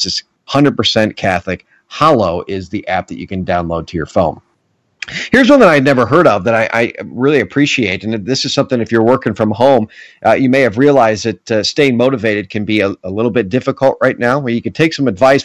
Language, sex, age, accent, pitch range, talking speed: English, male, 40-59, American, 110-140 Hz, 230 wpm